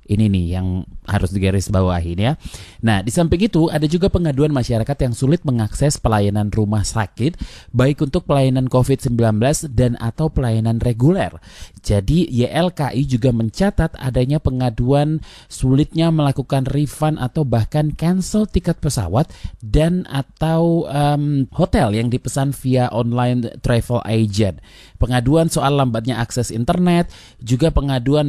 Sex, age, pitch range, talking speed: male, 30-49, 110-140 Hz, 125 wpm